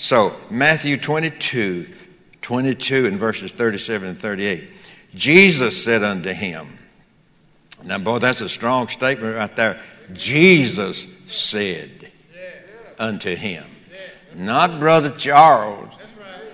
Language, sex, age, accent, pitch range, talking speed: English, male, 60-79, American, 120-160 Hz, 100 wpm